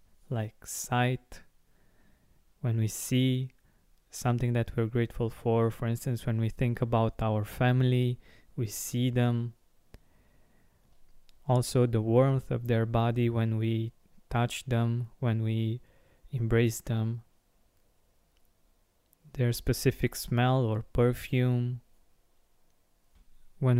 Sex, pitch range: male, 115-125 Hz